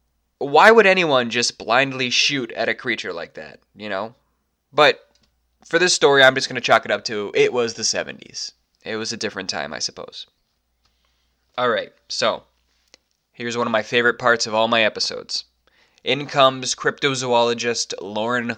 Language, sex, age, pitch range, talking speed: English, male, 20-39, 110-150 Hz, 170 wpm